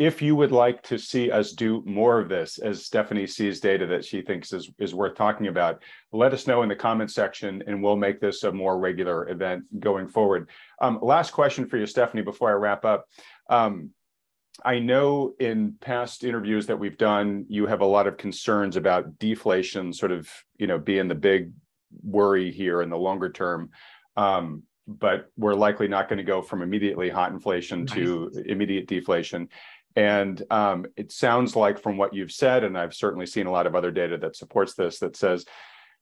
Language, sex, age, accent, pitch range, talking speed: English, male, 40-59, American, 90-115 Hz, 195 wpm